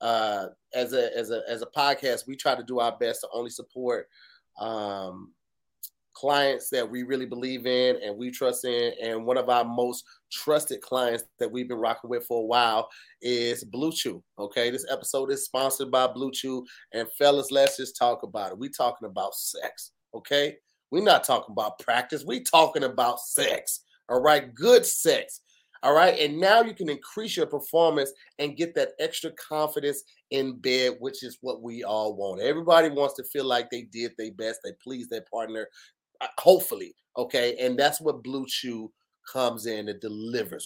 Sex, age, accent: male, 30-49, American